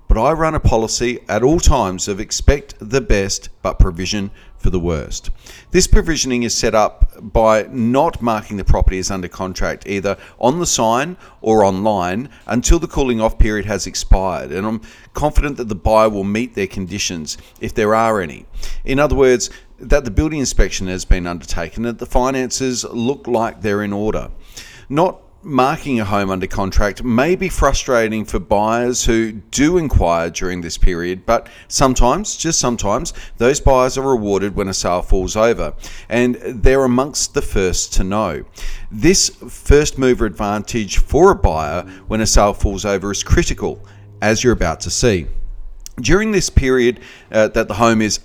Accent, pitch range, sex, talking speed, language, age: Australian, 95-125 Hz, male, 175 wpm, English, 40-59